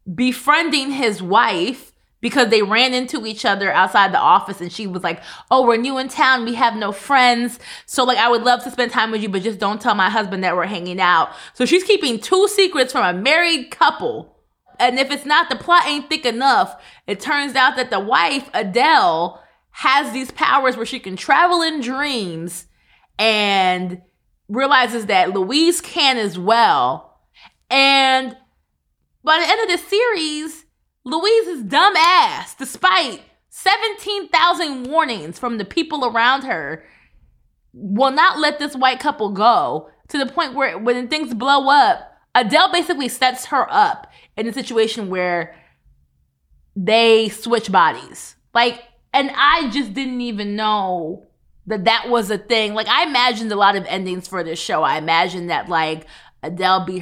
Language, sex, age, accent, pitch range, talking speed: English, female, 20-39, American, 210-295 Hz, 170 wpm